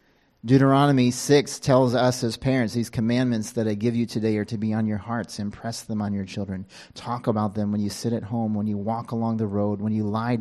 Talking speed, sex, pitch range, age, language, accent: 235 wpm, male, 105-120 Hz, 40-59, English, American